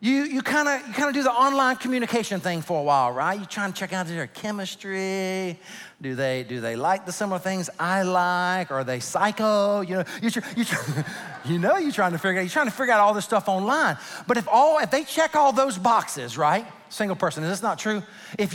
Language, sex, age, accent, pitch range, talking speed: English, male, 40-59, American, 170-275 Hz, 225 wpm